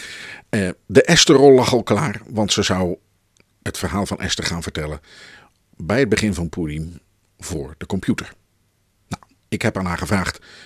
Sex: male